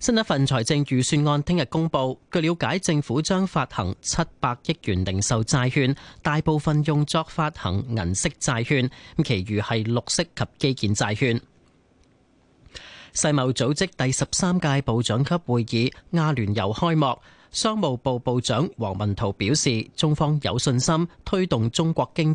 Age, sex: 30-49, male